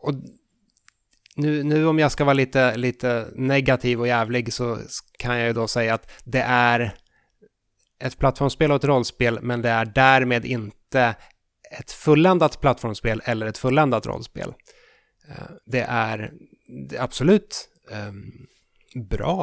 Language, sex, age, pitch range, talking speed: Swedish, male, 30-49, 115-140 Hz, 135 wpm